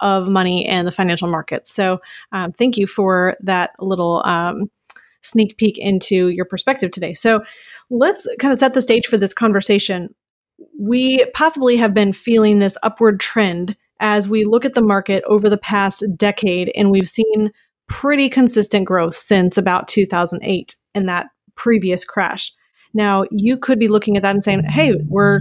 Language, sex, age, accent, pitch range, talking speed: English, female, 30-49, American, 190-225 Hz, 170 wpm